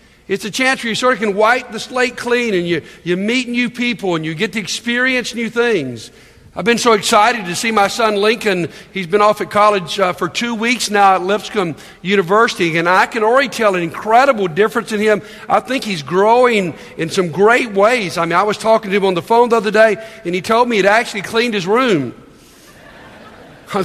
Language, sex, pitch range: English, male, 195-235 Hz